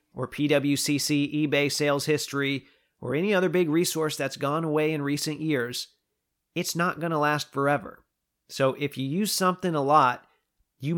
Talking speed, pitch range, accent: 165 wpm, 130-155 Hz, American